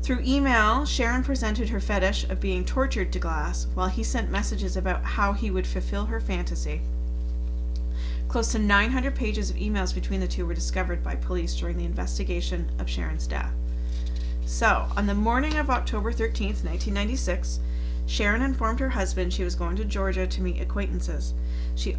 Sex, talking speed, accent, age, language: female, 170 wpm, American, 40-59, English